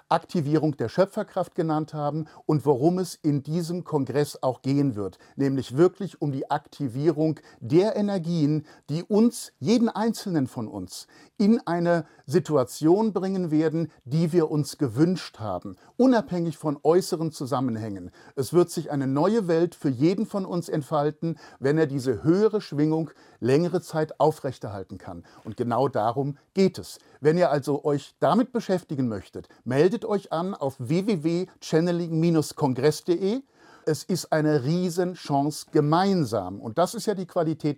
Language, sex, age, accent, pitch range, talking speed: German, male, 50-69, German, 145-180 Hz, 140 wpm